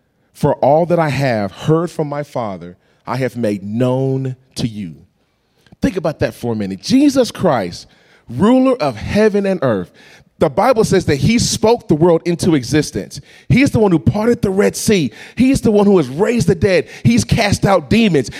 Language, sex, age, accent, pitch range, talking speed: English, male, 30-49, American, 120-195 Hz, 190 wpm